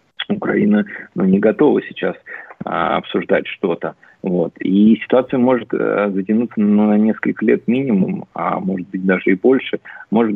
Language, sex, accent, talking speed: Russian, male, native, 145 wpm